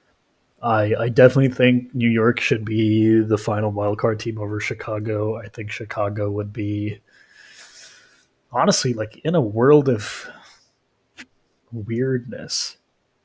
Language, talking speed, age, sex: English, 120 wpm, 20-39, male